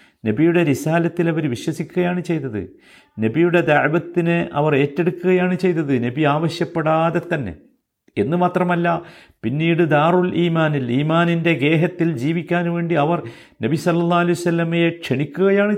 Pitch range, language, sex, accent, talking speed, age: 115-175 Hz, Malayalam, male, native, 105 wpm, 50-69